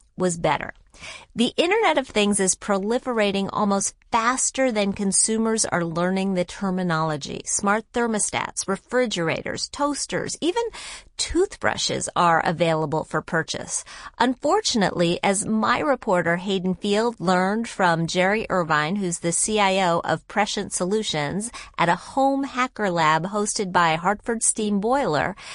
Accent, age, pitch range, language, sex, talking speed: American, 40-59, 180-245 Hz, English, female, 120 wpm